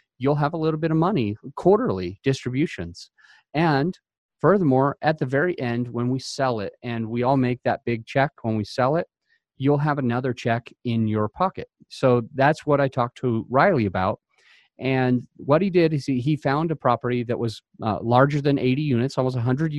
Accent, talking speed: American, 195 wpm